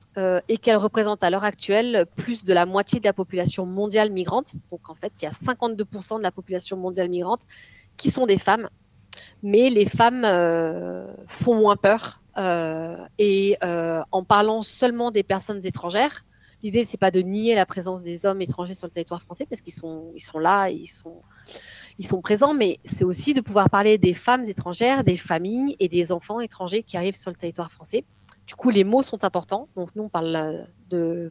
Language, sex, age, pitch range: French, female, 30-49, 180-225 Hz